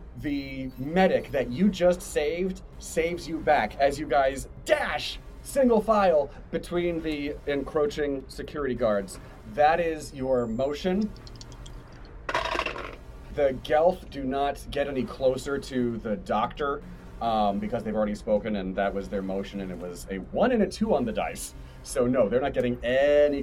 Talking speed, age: 155 wpm, 40-59